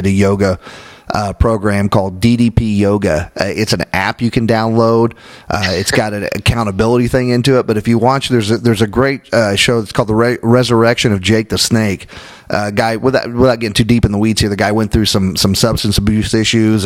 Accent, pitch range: American, 100-115 Hz